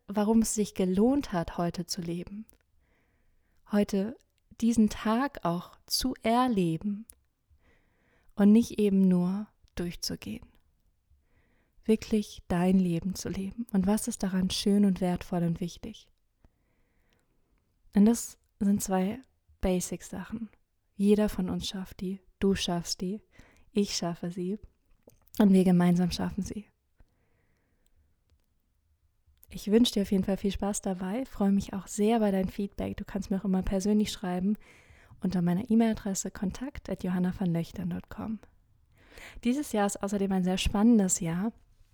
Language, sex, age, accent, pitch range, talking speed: German, female, 20-39, German, 180-215 Hz, 125 wpm